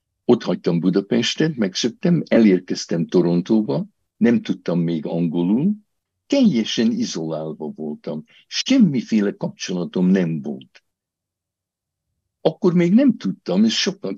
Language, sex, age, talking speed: Hungarian, male, 60-79, 100 wpm